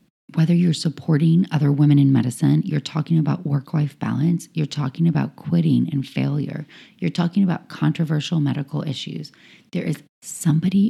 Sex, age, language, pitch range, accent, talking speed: female, 30-49, English, 150-190 Hz, American, 155 wpm